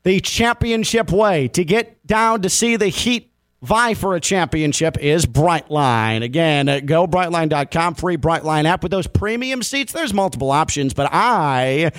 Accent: American